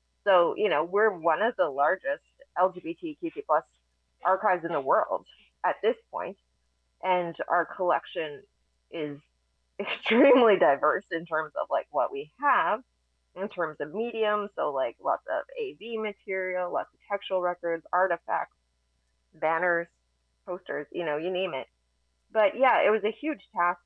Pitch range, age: 150-190 Hz, 20-39